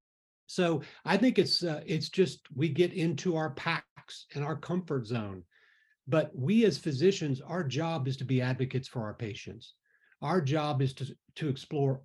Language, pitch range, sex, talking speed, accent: English, 125-160 Hz, male, 175 wpm, American